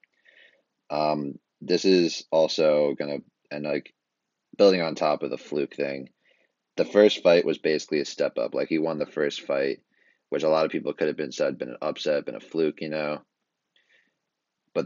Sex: male